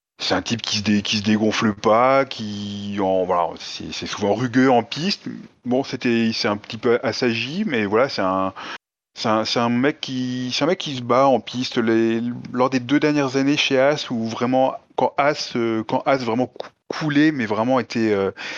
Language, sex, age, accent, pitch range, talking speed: French, male, 20-39, French, 105-140 Hz, 205 wpm